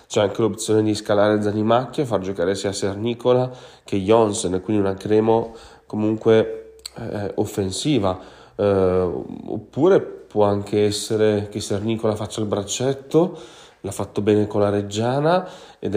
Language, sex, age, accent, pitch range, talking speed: Italian, male, 30-49, native, 95-110 Hz, 135 wpm